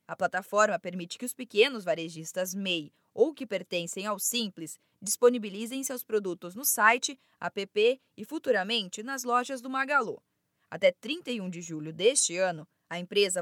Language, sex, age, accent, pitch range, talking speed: Portuguese, female, 10-29, Brazilian, 185-265 Hz, 150 wpm